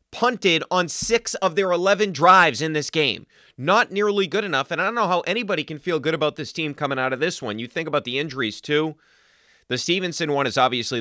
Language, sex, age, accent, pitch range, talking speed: English, male, 30-49, American, 110-140 Hz, 230 wpm